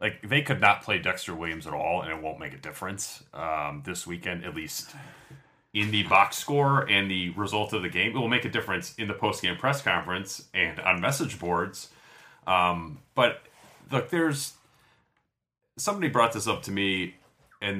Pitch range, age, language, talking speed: 90-110 Hz, 30-49, English, 185 wpm